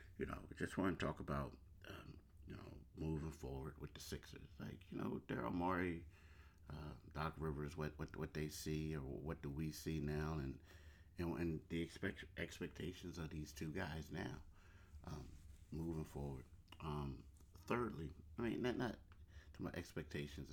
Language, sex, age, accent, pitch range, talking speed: English, male, 50-69, American, 75-85 Hz, 165 wpm